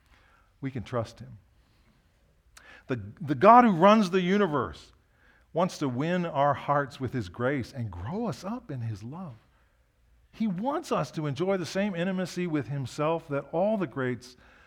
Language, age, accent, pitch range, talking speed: English, 50-69, American, 115-175 Hz, 165 wpm